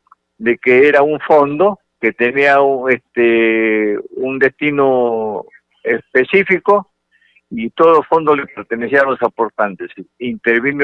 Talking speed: 115 wpm